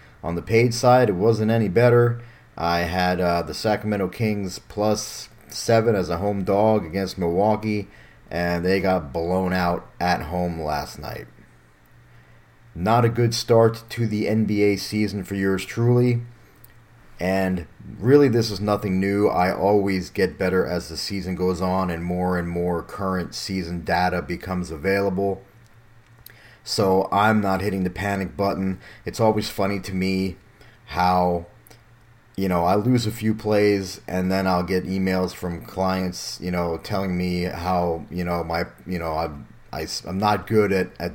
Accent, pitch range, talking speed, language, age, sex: American, 90-110 Hz, 160 wpm, English, 30-49, male